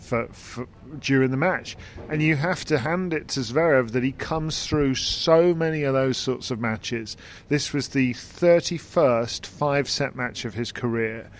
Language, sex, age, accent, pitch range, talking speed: English, male, 40-59, British, 105-140 Hz, 175 wpm